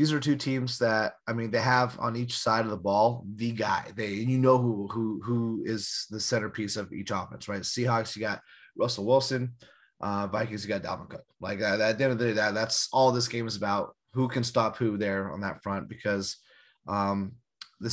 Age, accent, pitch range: 30-49, American, 105-130 Hz